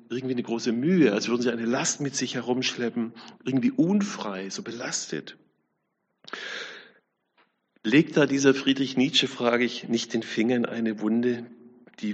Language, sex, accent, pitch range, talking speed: German, male, German, 110-130 Hz, 145 wpm